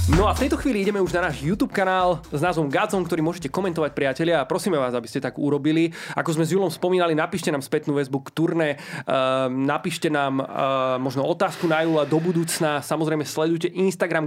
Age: 30-49